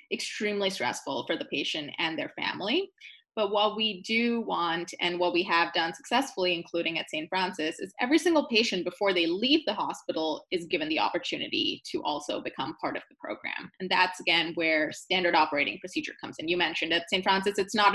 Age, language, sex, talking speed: 20-39, English, female, 195 wpm